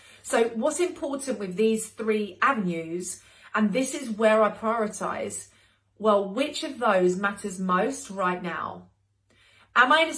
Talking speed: 145 wpm